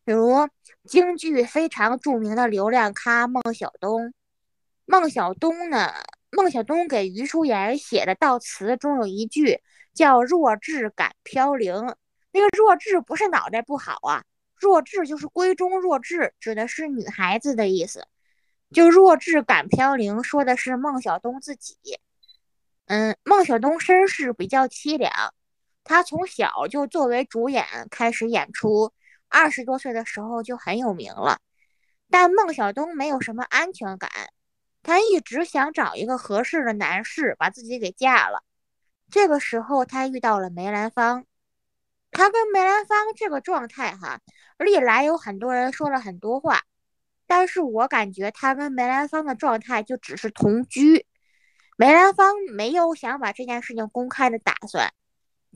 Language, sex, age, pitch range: Chinese, female, 20-39, 230-335 Hz